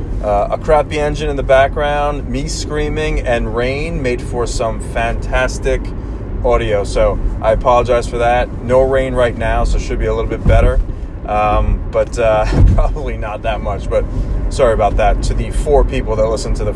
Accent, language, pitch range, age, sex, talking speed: American, English, 105-125 Hz, 30-49, male, 185 wpm